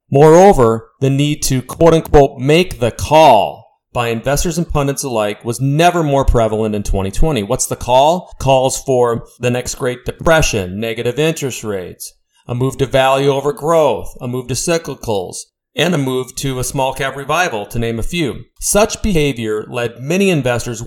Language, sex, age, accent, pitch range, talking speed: English, male, 40-59, American, 115-150 Hz, 165 wpm